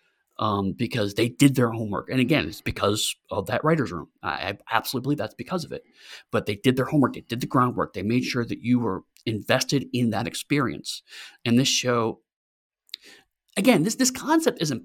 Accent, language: American, English